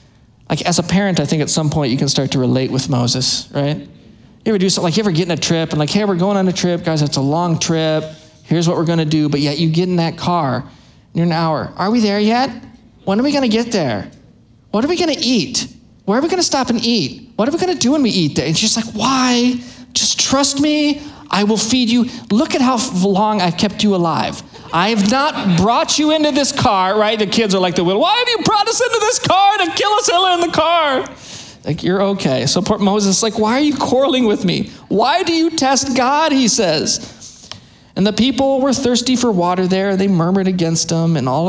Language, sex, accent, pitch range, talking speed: English, male, American, 170-245 Hz, 245 wpm